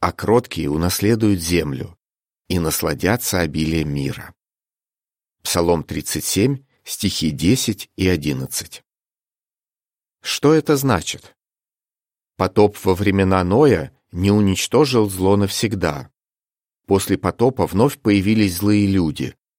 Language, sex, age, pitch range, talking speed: Russian, male, 40-59, 90-115 Hz, 95 wpm